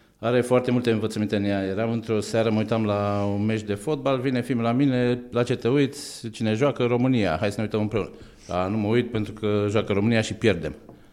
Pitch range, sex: 100-120 Hz, male